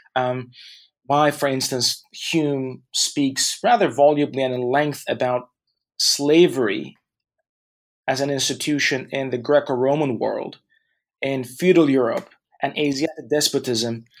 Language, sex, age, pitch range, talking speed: English, male, 30-49, 120-140 Hz, 110 wpm